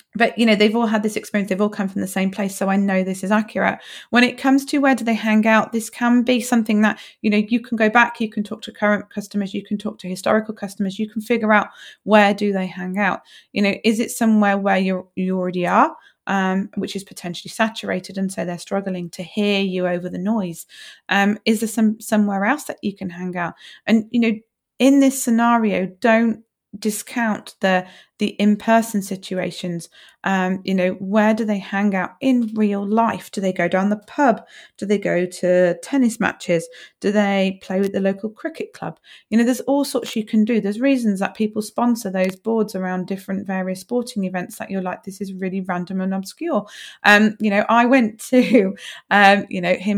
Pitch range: 190-225 Hz